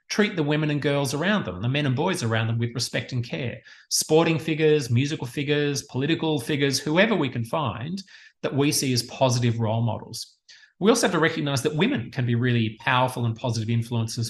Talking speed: 200 wpm